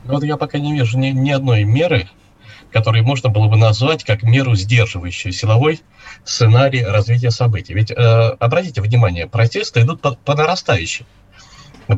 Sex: male